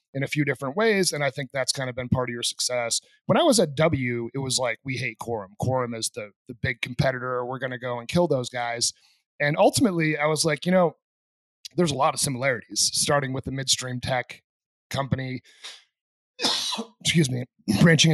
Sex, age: male, 30-49